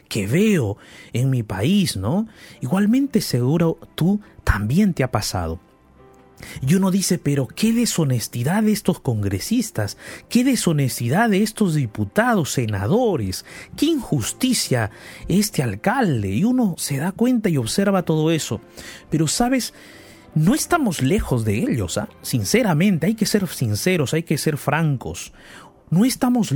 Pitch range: 135-215 Hz